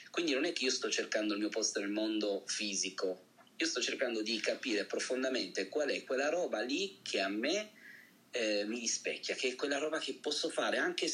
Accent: native